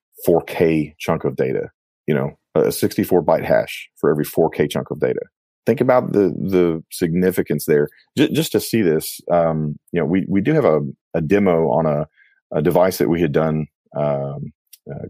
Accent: American